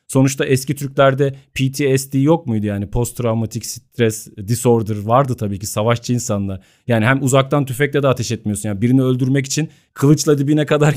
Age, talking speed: 40-59, 165 wpm